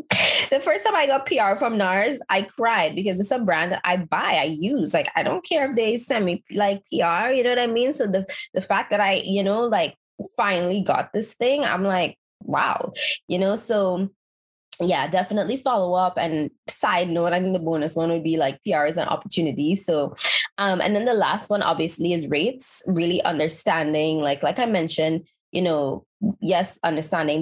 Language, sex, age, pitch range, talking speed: English, female, 20-39, 160-210 Hz, 200 wpm